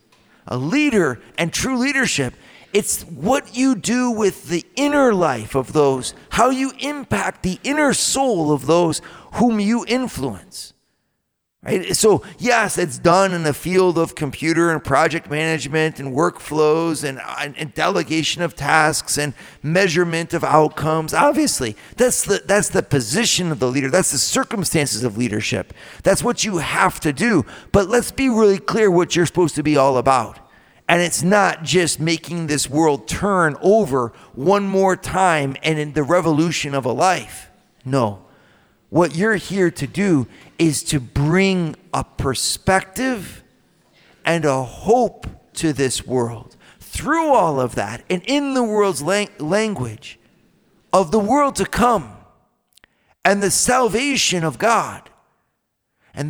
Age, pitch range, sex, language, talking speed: 40-59, 150-205 Hz, male, English, 145 wpm